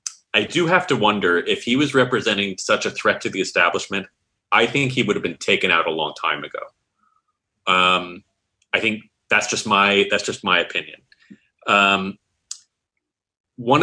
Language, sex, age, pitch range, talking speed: English, male, 30-49, 95-125 Hz, 170 wpm